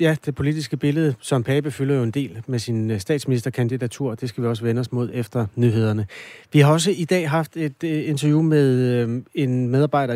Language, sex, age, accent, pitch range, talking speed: Danish, male, 30-49, native, 120-150 Hz, 195 wpm